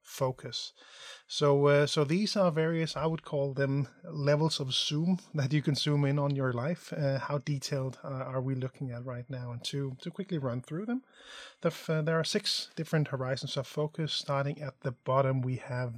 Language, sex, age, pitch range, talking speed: English, male, 30-49, 125-150 Hz, 200 wpm